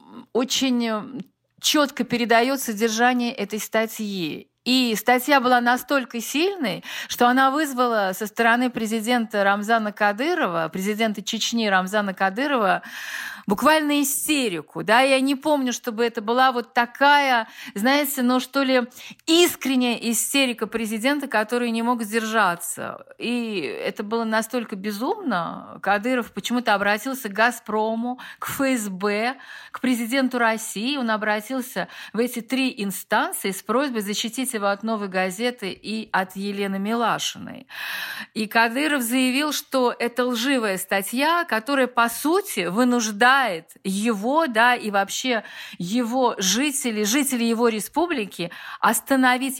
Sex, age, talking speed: female, 50-69, 115 wpm